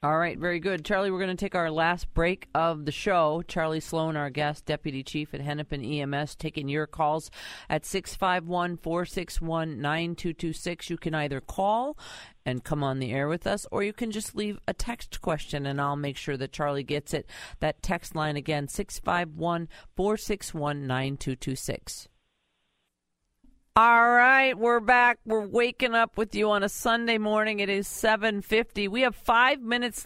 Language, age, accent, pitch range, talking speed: English, 50-69, American, 150-205 Hz, 160 wpm